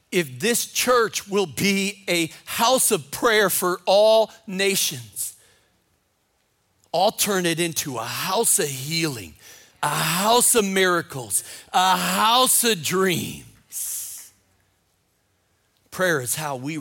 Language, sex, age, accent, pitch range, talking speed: English, male, 40-59, American, 130-185 Hz, 115 wpm